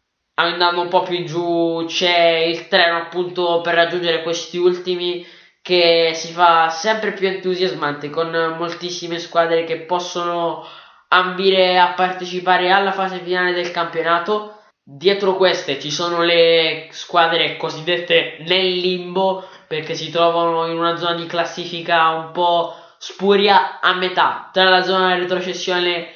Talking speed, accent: 140 wpm, native